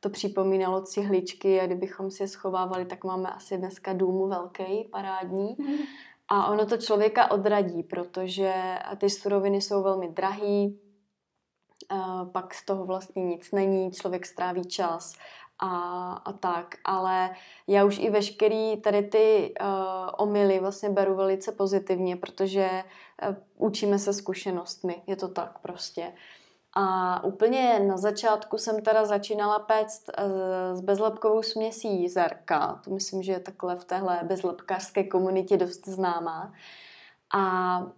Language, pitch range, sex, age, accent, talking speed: Czech, 185-200 Hz, female, 20-39, native, 125 wpm